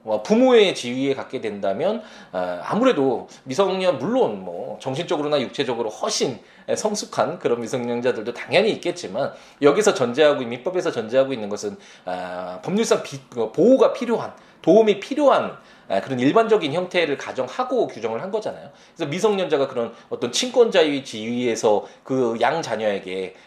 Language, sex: Korean, male